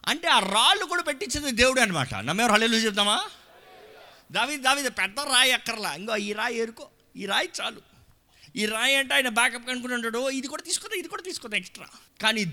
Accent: native